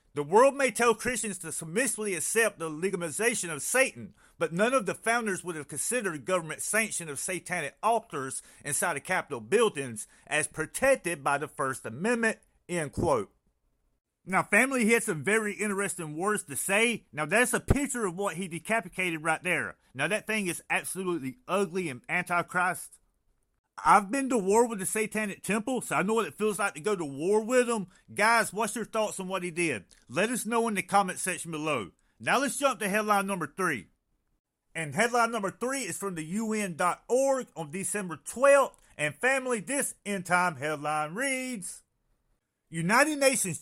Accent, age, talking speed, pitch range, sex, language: American, 40-59, 175 wpm, 165-225 Hz, male, English